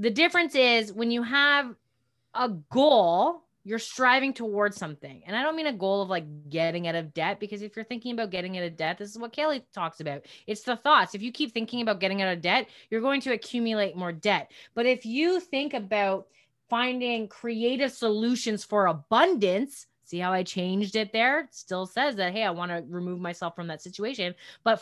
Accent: American